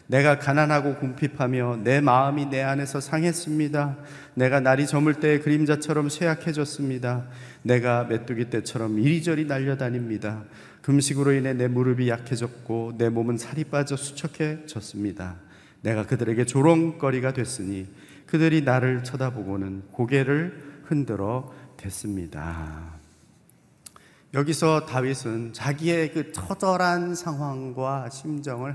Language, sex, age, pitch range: Korean, male, 40-59, 125-155 Hz